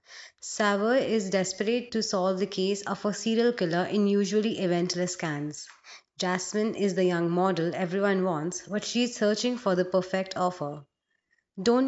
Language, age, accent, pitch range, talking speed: English, 20-39, Indian, 180-210 Hz, 155 wpm